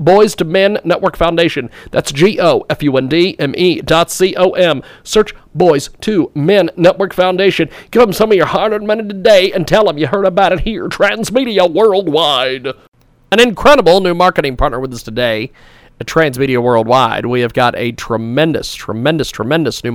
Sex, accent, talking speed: male, American, 155 wpm